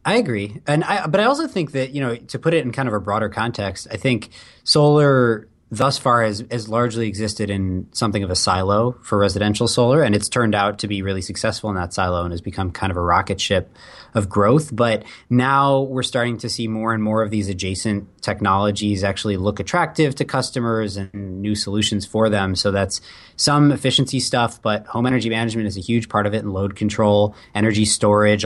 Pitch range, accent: 95-115 Hz, American